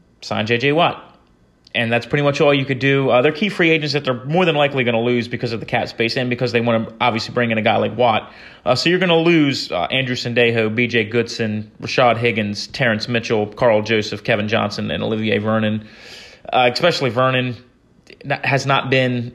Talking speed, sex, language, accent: 215 wpm, male, English, American